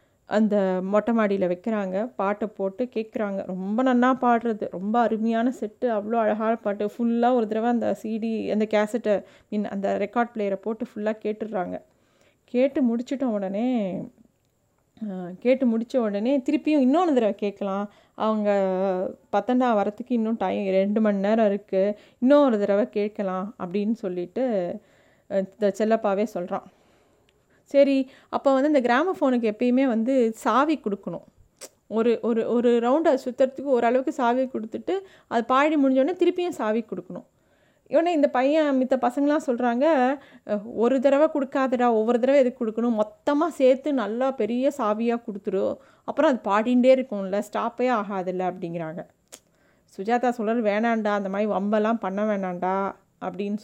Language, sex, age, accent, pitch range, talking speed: Tamil, female, 30-49, native, 205-255 Hz, 130 wpm